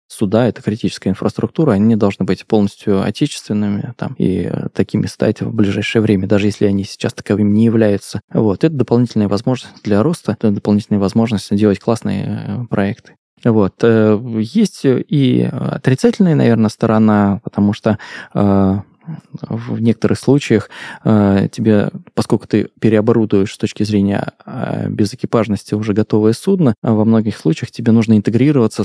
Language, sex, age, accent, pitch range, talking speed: Russian, male, 20-39, native, 100-115 Hz, 135 wpm